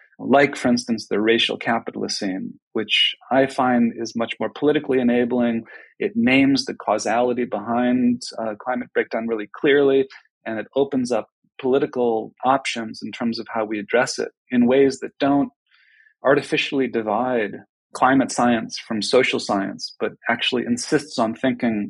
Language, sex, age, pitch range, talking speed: English, male, 40-59, 115-135 Hz, 150 wpm